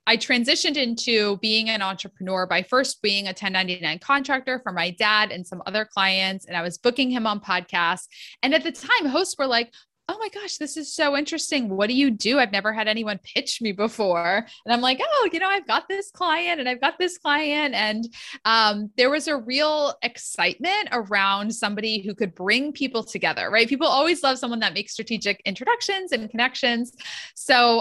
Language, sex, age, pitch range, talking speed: English, female, 20-39, 195-255 Hz, 200 wpm